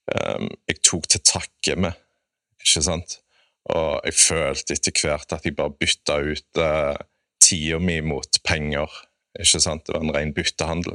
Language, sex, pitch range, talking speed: English, male, 80-95 Hz, 190 wpm